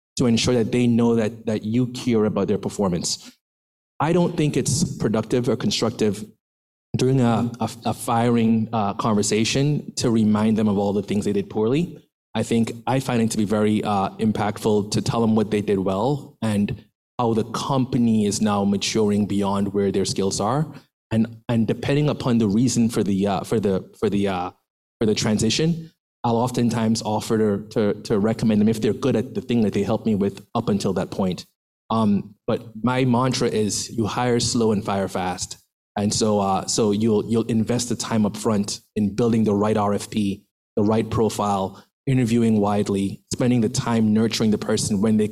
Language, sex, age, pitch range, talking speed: English, male, 20-39, 105-120 Hz, 190 wpm